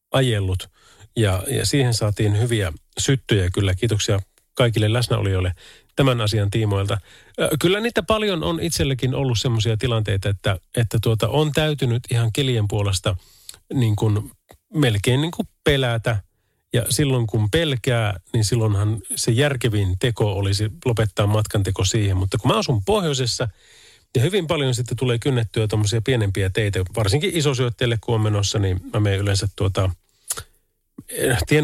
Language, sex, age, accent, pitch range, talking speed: Finnish, male, 30-49, native, 100-135 Hz, 140 wpm